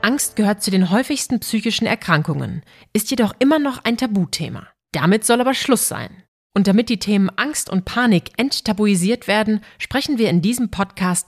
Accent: German